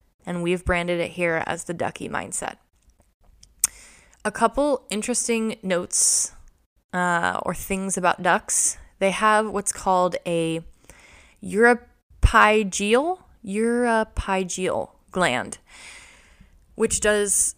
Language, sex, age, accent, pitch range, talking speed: English, female, 10-29, American, 175-220 Hz, 90 wpm